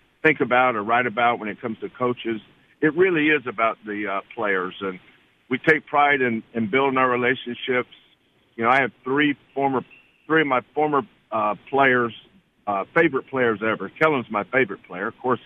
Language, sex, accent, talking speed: English, male, American, 185 wpm